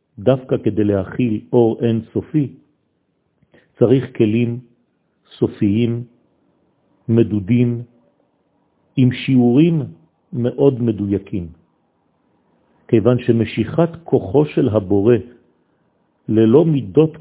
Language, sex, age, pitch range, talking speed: French, male, 50-69, 110-135 Hz, 75 wpm